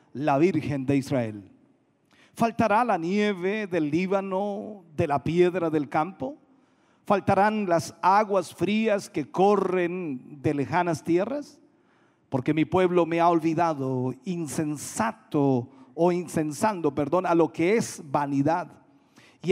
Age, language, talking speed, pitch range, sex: 50-69, Spanish, 120 wpm, 135-185 Hz, male